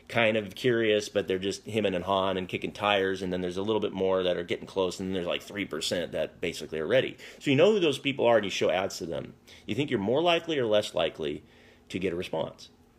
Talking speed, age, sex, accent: 265 wpm, 30-49, male, American